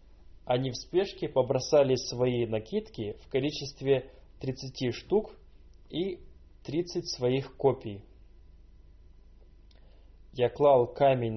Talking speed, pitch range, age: 90 wpm, 95-140 Hz, 20-39